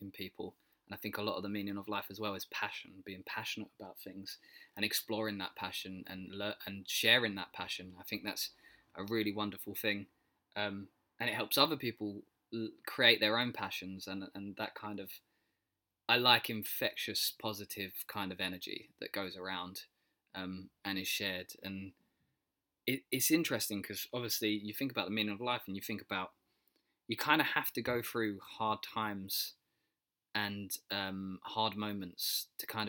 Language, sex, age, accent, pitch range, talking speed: English, male, 20-39, British, 95-105 Hz, 180 wpm